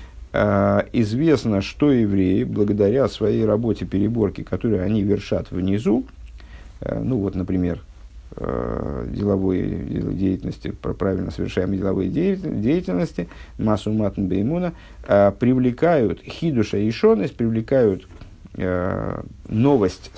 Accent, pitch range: native, 95-115 Hz